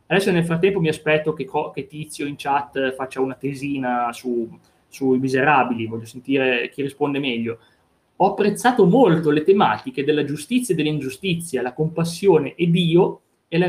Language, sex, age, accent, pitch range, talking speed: Italian, male, 30-49, native, 140-195 Hz, 160 wpm